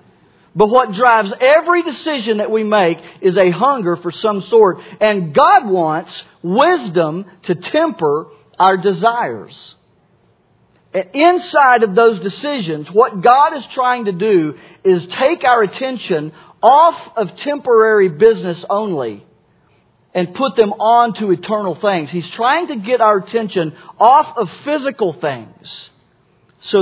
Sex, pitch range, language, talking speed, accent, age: male, 180-245 Hz, English, 130 wpm, American, 40-59